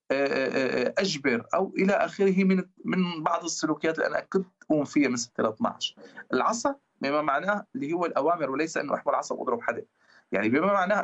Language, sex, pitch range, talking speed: Arabic, male, 145-195 Hz, 175 wpm